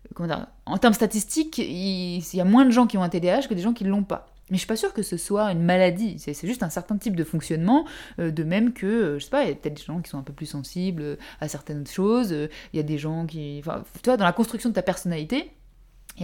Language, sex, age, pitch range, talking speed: French, female, 20-39, 160-230 Hz, 280 wpm